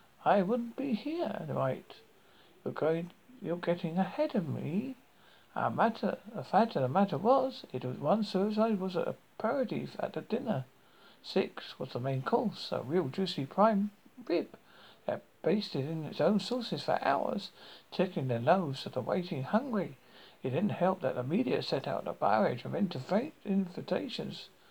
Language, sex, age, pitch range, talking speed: English, male, 60-79, 160-220 Hz, 160 wpm